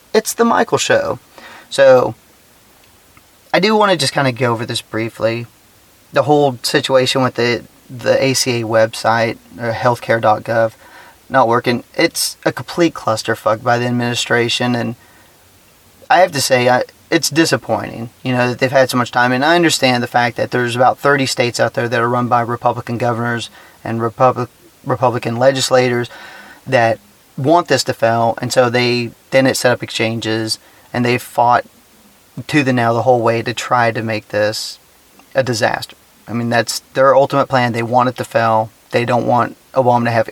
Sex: male